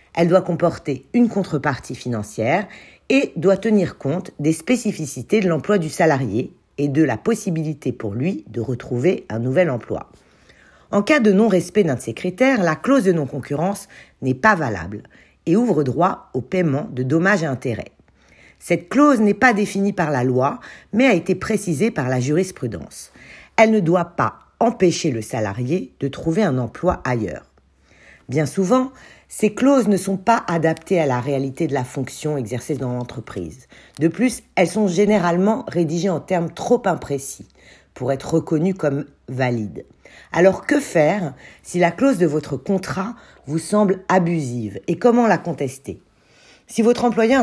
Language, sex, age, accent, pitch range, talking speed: French, female, 50-69, French, 135-200 Hz, 165 wpm